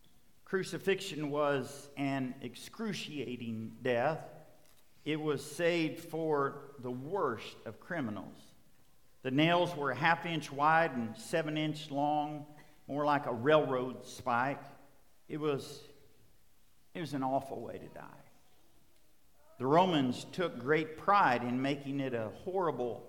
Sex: male